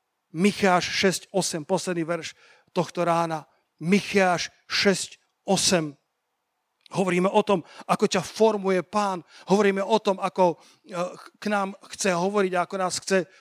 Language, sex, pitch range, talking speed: Slovak, male, 175-220 Hz, 115 wpm